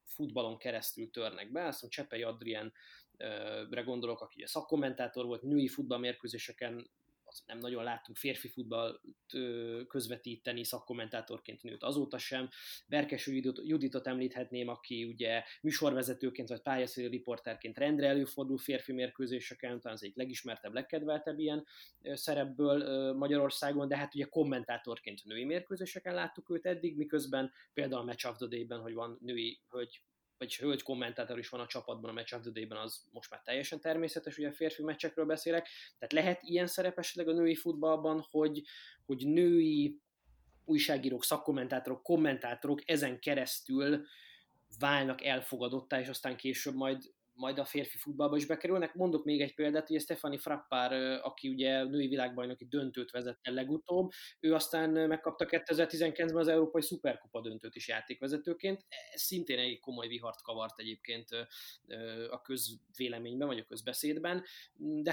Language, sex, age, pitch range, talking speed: Hungarian, male, 20-39, 125-155 Hz, 135 wpm